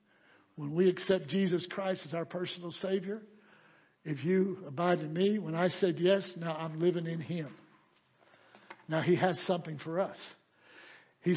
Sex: male